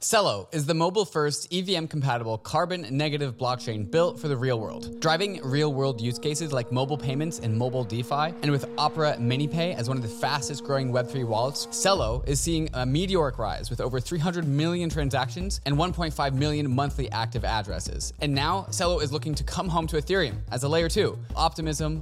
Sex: male